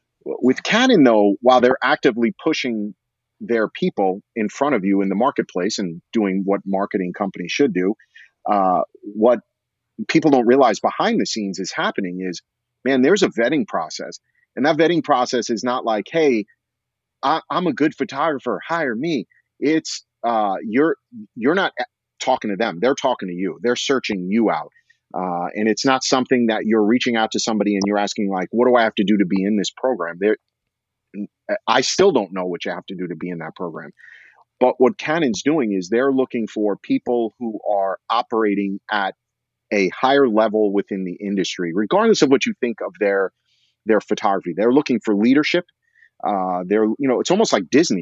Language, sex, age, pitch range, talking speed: English, male, 30-49, 100-130 Hz, 185 wpm